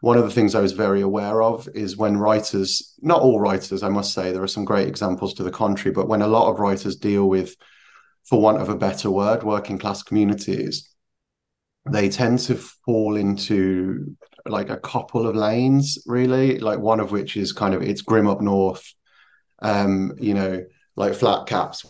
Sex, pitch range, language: male, 95-115 Hz, English